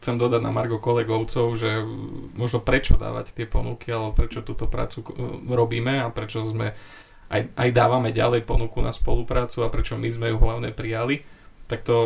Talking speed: 170 wpm